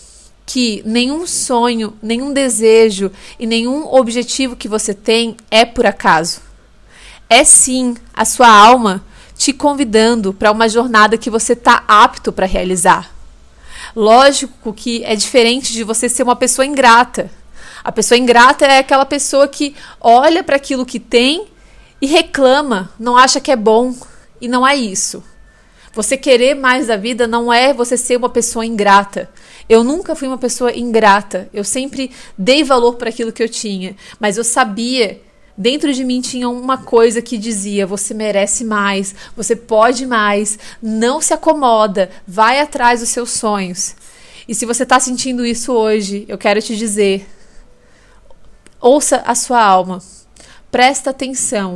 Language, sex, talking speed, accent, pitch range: Portuguese, female, 155 wpm, Brazilian, 215-255 Hz